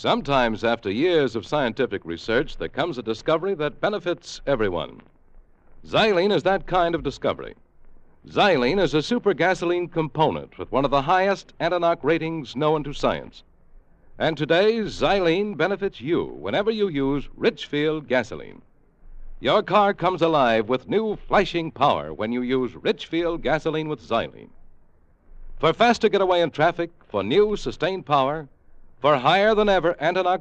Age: 60-79